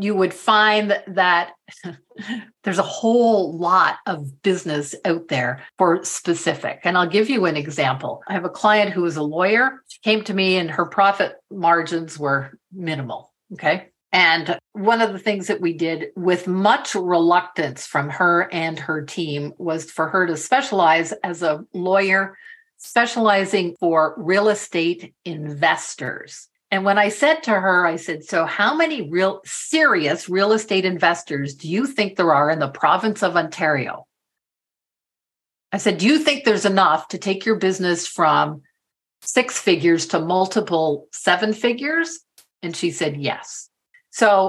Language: English